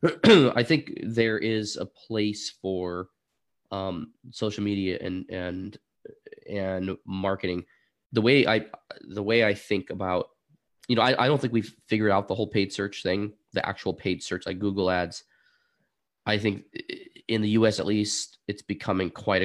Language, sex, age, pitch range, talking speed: English, male, 20-39, 90-105 Hz, 165 wpm